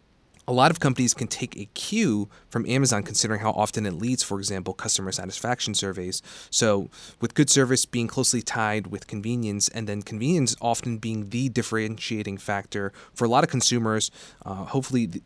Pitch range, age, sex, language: 105-125 Hz, 30-49, male, English